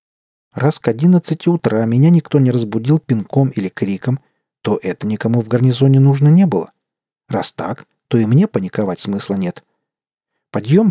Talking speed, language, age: 160 wpm, Russian, 40-59